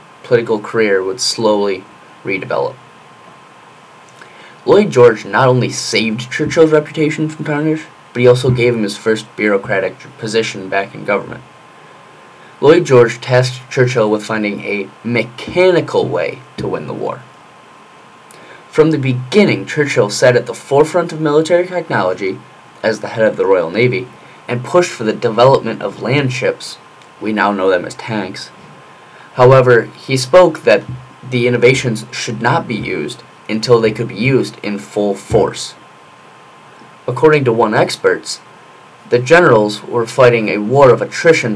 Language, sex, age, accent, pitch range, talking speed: English, male, 20-39, American, 110-145 Hz, 145 wpm